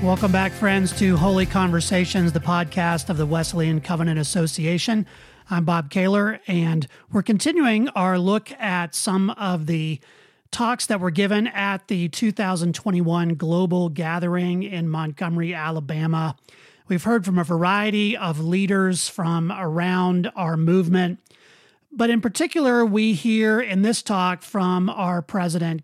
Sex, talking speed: male, 135 wpm